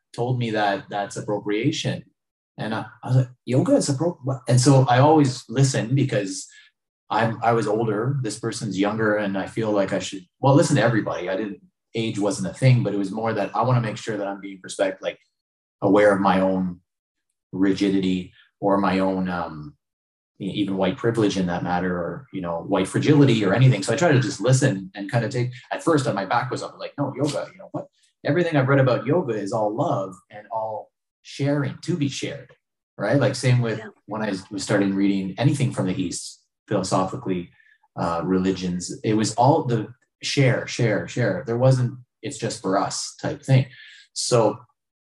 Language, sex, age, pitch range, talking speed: English, male, 30-49, 95-130 Hz, 195 wpm